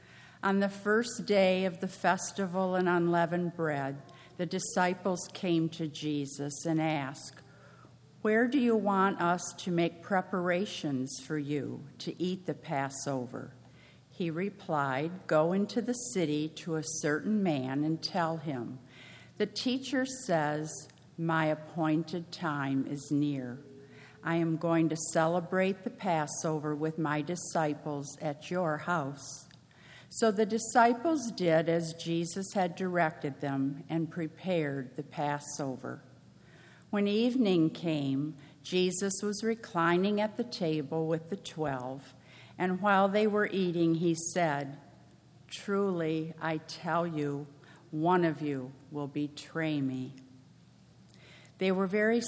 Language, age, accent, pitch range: English, 50-69, American, 150-190 Hz